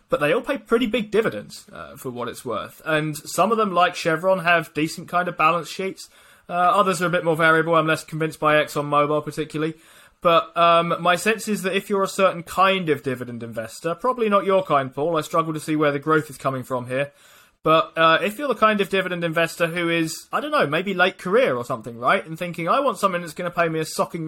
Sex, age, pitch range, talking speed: male, 20-39, 145-180 Hz, 245 wpm